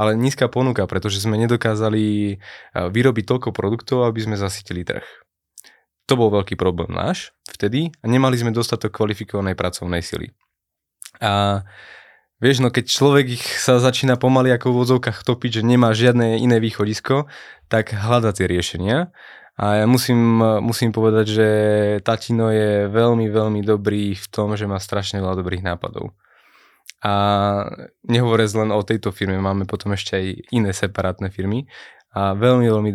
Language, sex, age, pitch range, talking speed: Slovak, male, 20-39, 100-115 Hz, 145 wpm